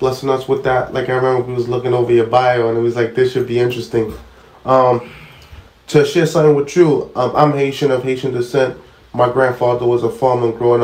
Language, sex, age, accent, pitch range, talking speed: English, male, 20-39, American, 110-125 Hz, 215 wpm